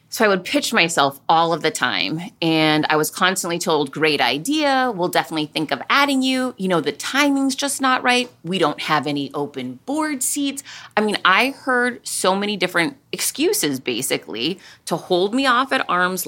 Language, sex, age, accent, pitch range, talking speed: English, female, 30-49, American, 155-245 Hz, 190 wpm